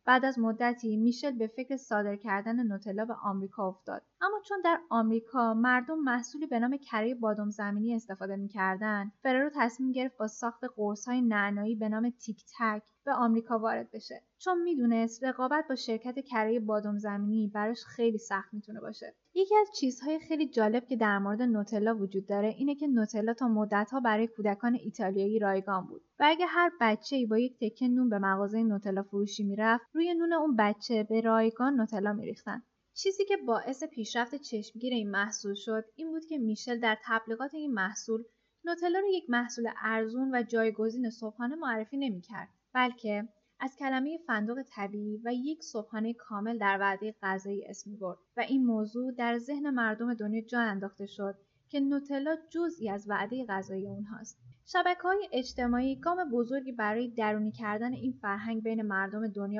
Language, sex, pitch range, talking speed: Persian, female, 210-255 Hz, 165 wpm